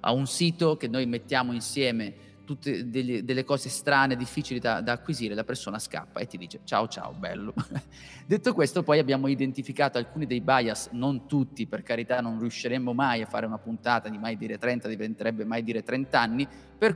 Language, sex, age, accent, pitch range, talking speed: Italian, male, 30-49, native, 115-140 Hz, 190 wpm